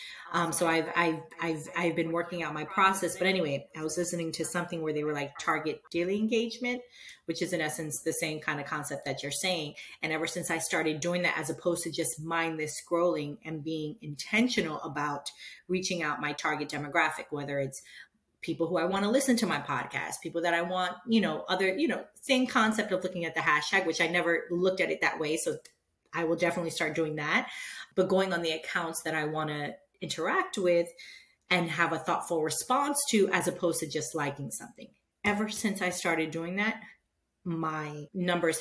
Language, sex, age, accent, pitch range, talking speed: English, female, 30-49, American, 155-190 Hz, 200 wpm